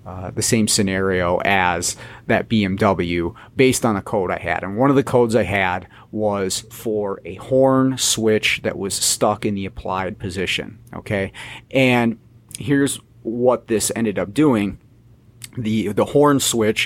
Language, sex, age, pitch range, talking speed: English, male, 30-49, 105-125 Hz, 155 wpm